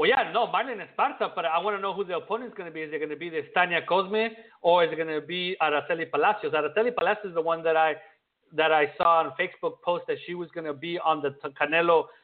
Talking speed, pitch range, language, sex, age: 265 wpm, 150-190 Hz, English, male, 50-69